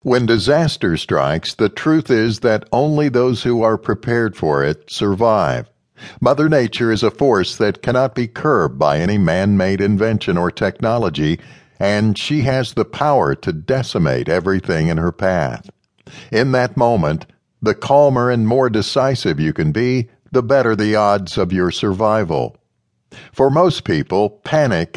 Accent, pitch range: American, 100-130 Hz